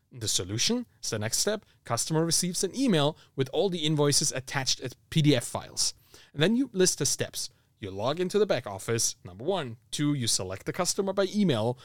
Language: English